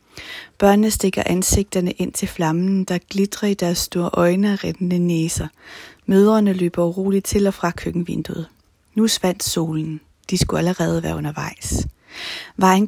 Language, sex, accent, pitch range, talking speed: Danish, female, native, 165-195 Hz, 145 wpm